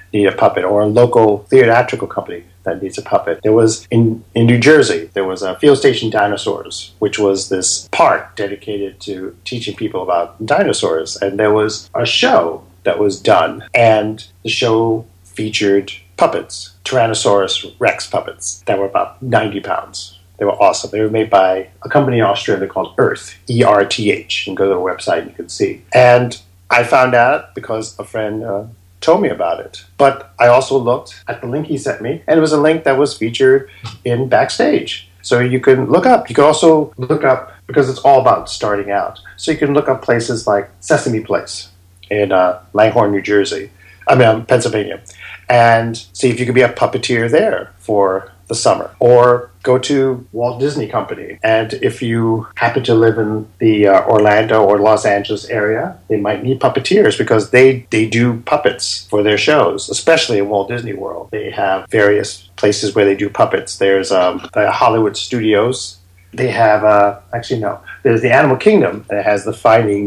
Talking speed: 185 wpm